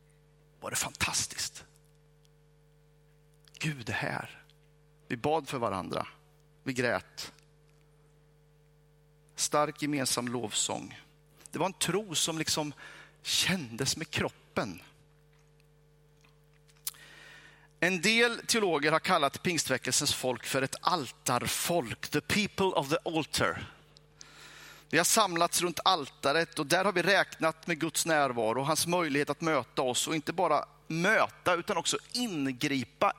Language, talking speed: Swedish, 120 wpm